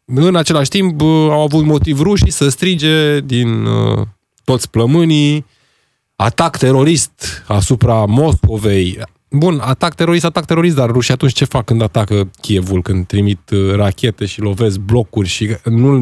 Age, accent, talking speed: 20-39, native, 145 wpm